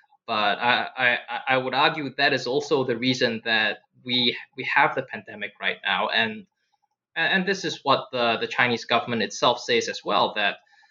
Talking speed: 180 wpm